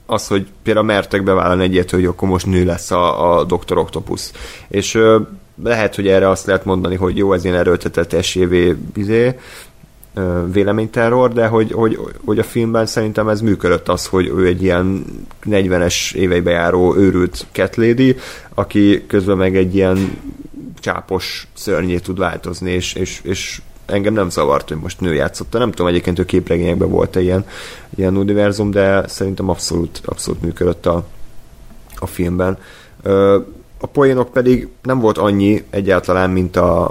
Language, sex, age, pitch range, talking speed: Hungarian, male, 30-49, 90-100 Hz, 160 wpm